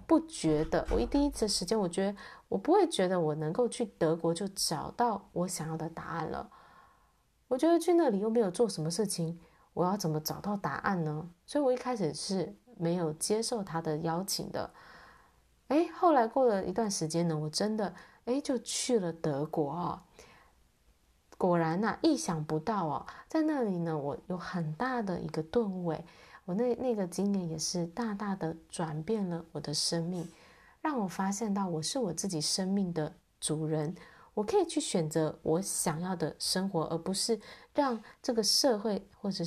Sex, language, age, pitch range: female, Chinese, 30-49, 160-230 Hz